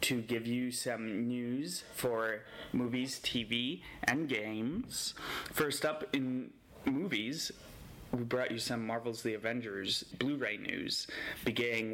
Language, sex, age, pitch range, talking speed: English, male, 20-39, 110-120 Hz, 120 wpm